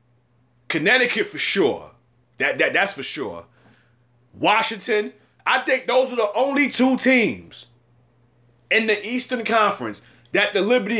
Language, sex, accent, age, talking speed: English, male, American, 30-49, 130 wpm